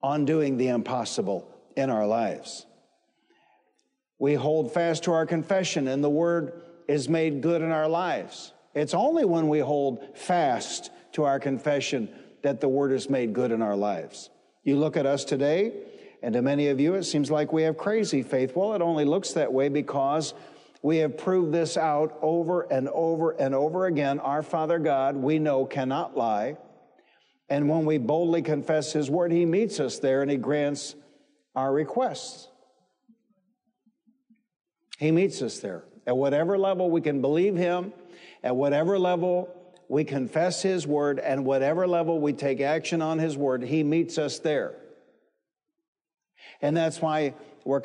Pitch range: 145-180 Hz